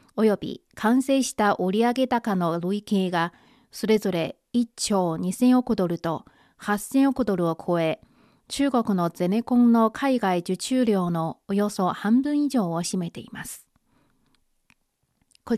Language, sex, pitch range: Japanese, female, 180-250 Hz